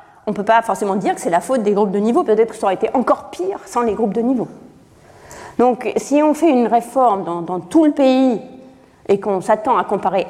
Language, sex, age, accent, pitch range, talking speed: French, female, 40-59, French, 190-255 Hz, 245 wpm